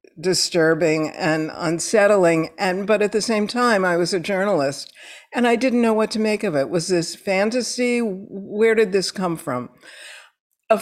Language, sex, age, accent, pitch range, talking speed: English, female, 60-79, American, 170-220 Hz, 170 wpm